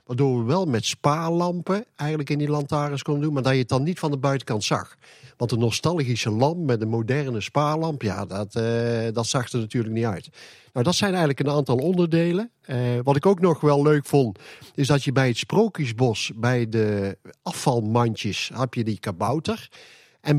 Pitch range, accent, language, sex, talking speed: 120-160 Hz, Dutch, Dutch, male, 195 wpm